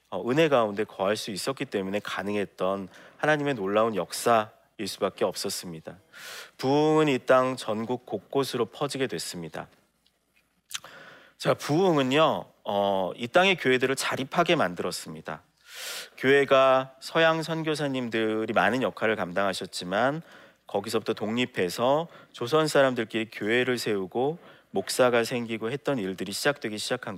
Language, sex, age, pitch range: Korean, male, 40-59, 105-140 Hz